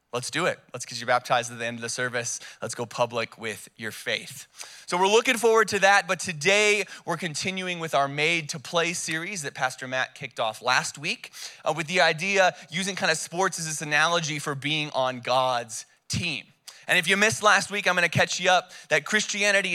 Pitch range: 140-185 Hz